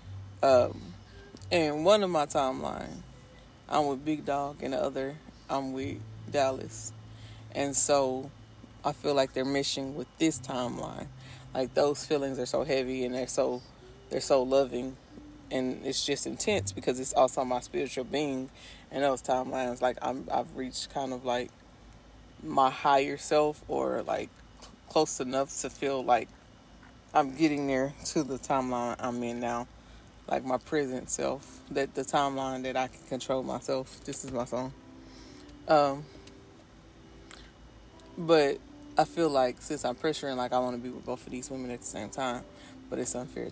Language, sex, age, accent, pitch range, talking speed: English, female, 20-39, American, 120-140 Hz, 160 wpm